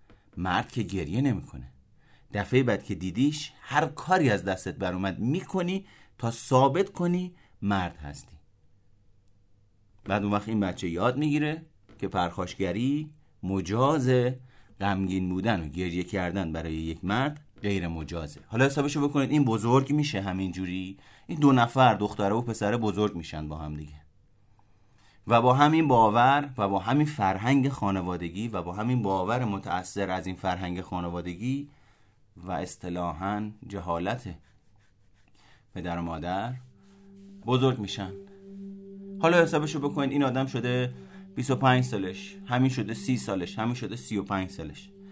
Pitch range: 95-135 Hz